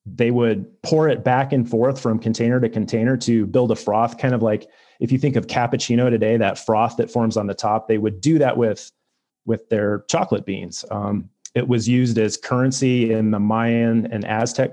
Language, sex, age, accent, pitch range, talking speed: English, male, 30-49, American, 110-125 Hz, 210 wpm